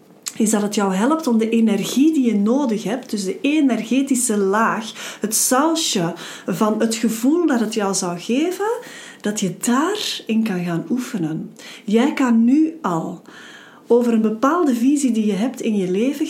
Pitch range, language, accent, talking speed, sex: 190-245 Hz, Dutch, Dutch, 170 wpm, female